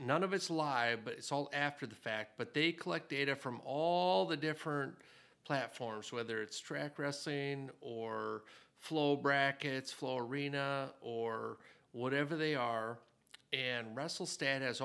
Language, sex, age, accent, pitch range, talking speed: English, male, 50-69, American, 120-150 Hz, 140 wpm